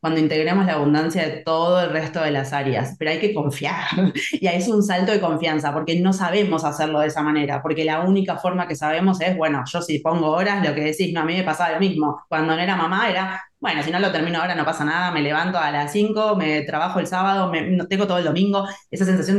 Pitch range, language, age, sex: 155-190 Hz, Spanish, 20-39, female